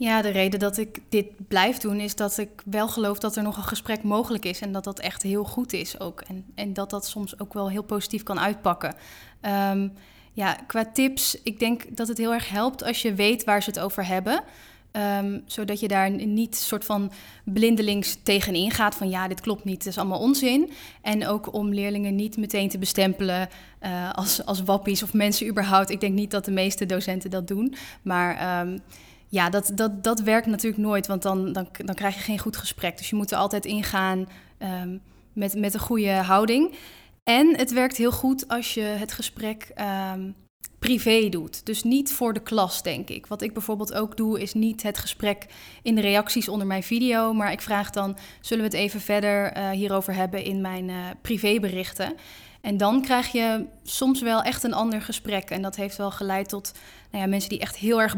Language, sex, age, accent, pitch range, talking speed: English, female, 10-29, Dutch, 195-220 Hz, 205 wpm